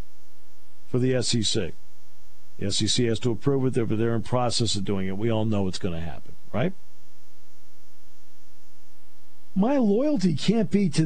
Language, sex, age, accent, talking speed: English, male, 50-69, American, 150 wpm